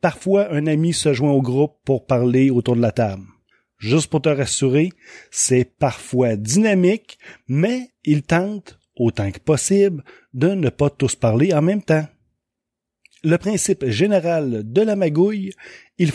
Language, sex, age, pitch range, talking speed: French, male, 30-49, 120-185 Hz, 150 wpm